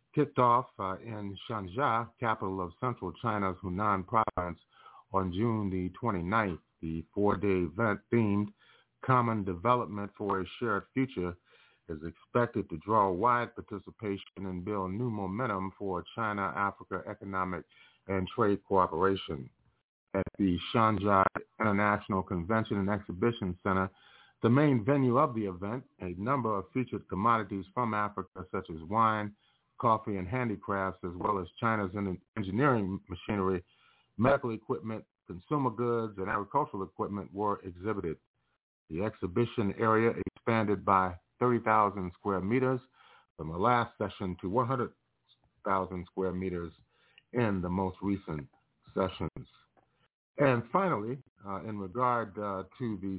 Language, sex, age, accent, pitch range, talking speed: English, male, 30-49, American, 95-115 Hz, 125 wpm